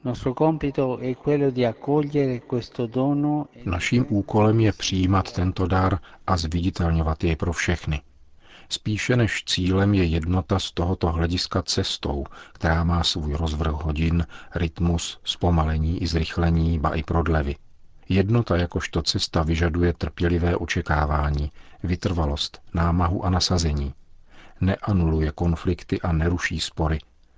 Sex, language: male, Czech